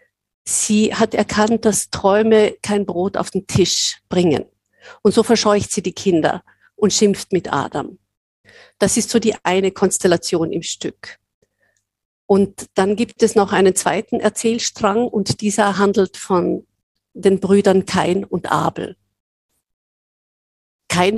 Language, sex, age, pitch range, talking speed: German, female, 50-69, 180-215 Hz, 135 wpm